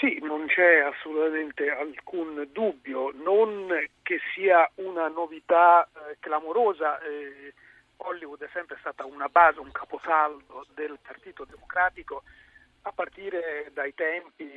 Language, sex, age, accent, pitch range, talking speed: Italian, male, 40-59, native, 145-220 Hz, 120 wpm